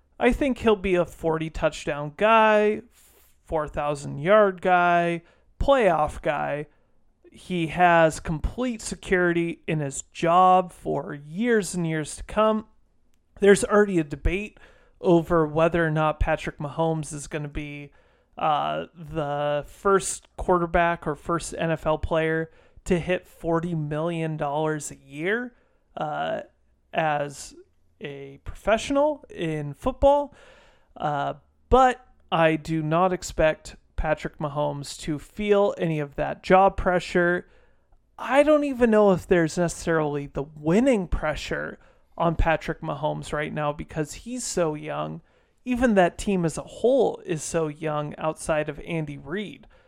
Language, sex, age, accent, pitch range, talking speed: English, male, 30-49, American, 155-195 Hz, 125 wpm